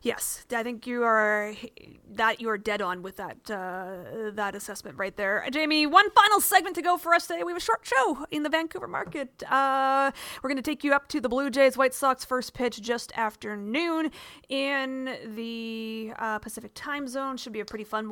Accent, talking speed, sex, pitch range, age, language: American, 210 wpm, female, 215-295 Hz, 30-49, English